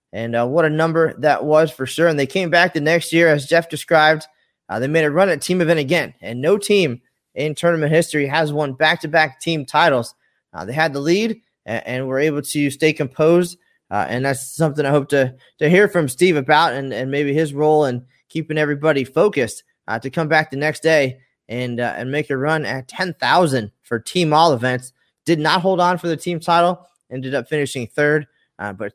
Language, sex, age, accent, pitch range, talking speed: English, male, 20-39, American, 135-165 Hz, 220 wpm